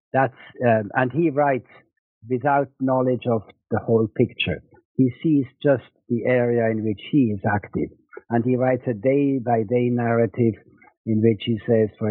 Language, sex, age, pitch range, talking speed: English, male, 60-79, 110-130 Hz, 170 wpm